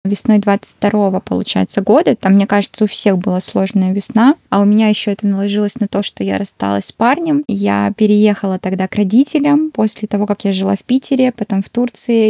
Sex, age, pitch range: female, 20-39, 205-250 Hz